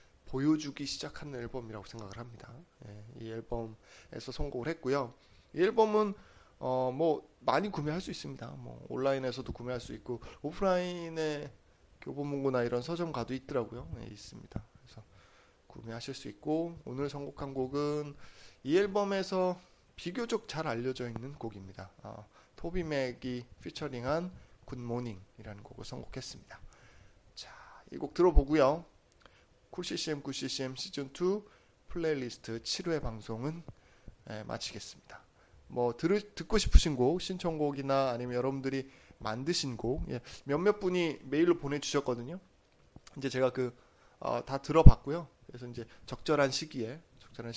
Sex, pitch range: male, 120-150 Hz